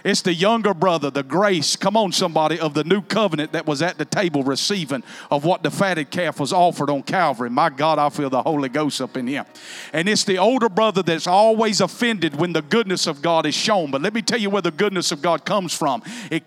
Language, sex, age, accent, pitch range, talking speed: English, male, 50-69, American, 185-260 Hz, 240 wpm